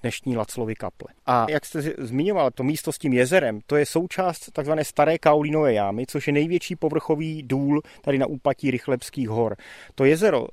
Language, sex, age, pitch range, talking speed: Czech, male, 30-49, 130-160 Hz, 175 wpm